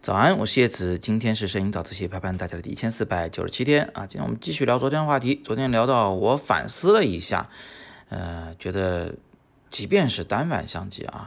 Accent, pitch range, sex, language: native, 95-135 Hz, male, Chinese